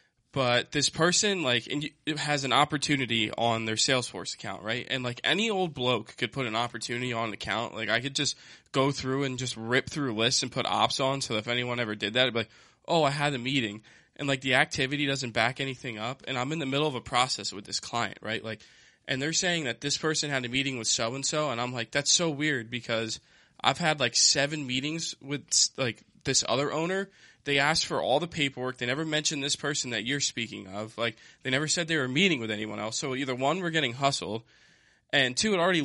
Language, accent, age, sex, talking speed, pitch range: English, American, 20-39, male, 235 wpm, 120-145 Hz